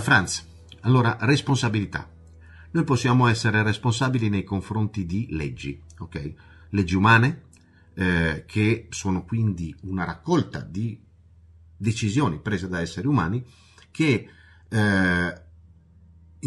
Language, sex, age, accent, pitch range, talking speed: Italian, male, 50-69, native, 85-125 Hz, 100 wpm